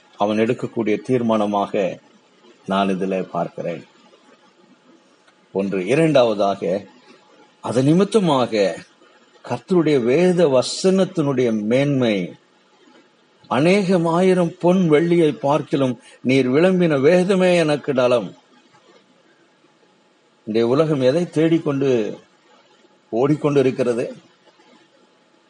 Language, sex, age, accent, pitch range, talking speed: Tamil, male, 50-69, native, 120-155 Hz, 65 wpm